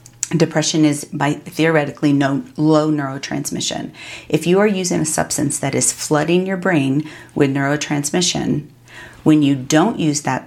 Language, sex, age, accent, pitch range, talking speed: English, female, 40-59, American, 135-155 Hz, 140 wpm